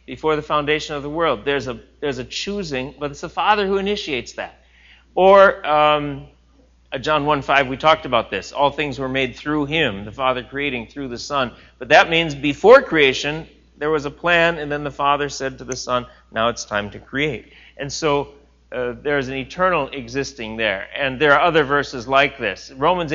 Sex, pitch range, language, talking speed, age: male, 120-155 Hz, English, 200 wpm, 40-59